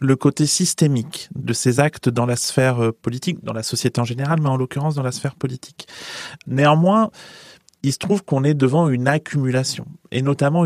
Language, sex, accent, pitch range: French, male, French, 125-160 Hz